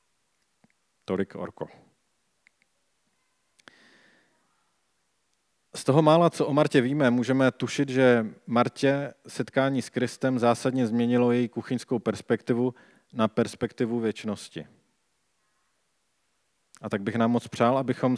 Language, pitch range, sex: Czech, 110-125 Hz, male